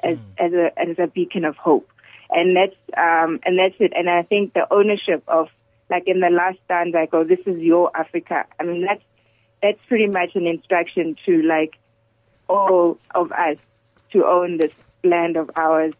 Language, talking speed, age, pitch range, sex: English, 190 wpm, 20-39, 160-180 Hz, female